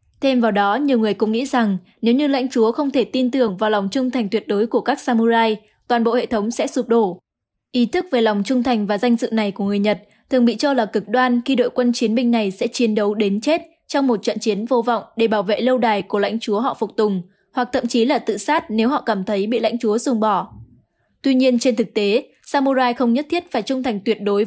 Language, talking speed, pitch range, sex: Vietnamese, 265 wpm, 215-250 Hz, female